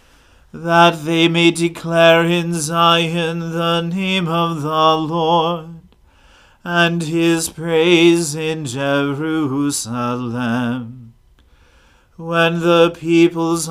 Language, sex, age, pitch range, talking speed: English, male, 40-59, 155-170 Hz, 85 wpm